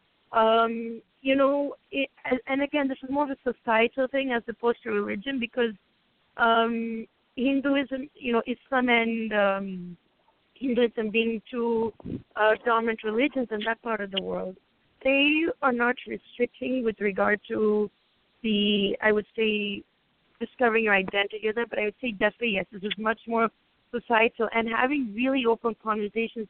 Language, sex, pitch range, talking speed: English, female, 215-255 Hz, 155 wpm